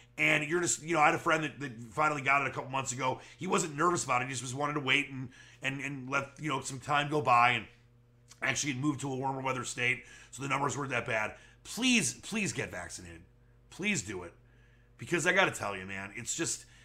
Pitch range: 120-155 Hz